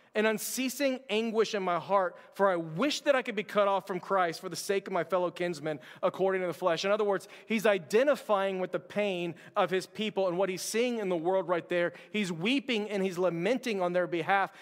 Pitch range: 195-250 Hz